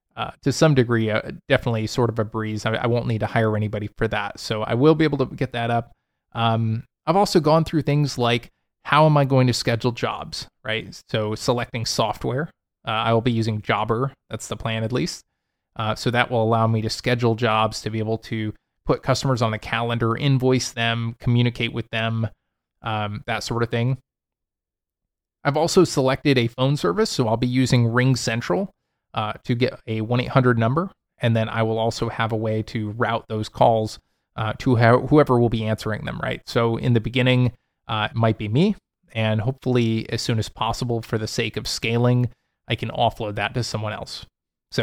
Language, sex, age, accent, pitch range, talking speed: English, male, 20-39, American, 110-130 Hz, 205 wpm